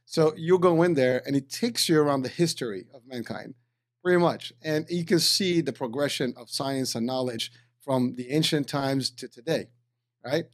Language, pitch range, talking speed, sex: English, 125-155 Hz, 190 wpm, male